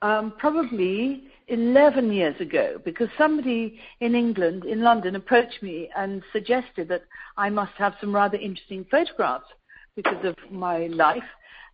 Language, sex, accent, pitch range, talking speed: English, female, British, 185-240 Hz, 140 wpm